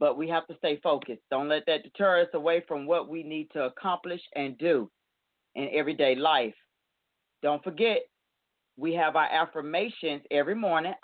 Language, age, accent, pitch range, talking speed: English, 40-59, American, 145-190 Hz, 170 wpm